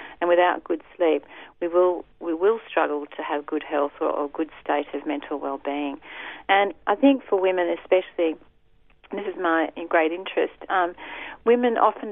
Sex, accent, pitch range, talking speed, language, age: female, Australian, 160-205 Hz, 170 wpm, English, 40-59